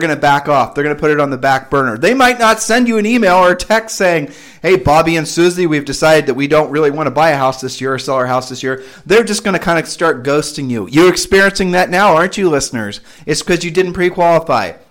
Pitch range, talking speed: 145-195 Hz, 275 wpm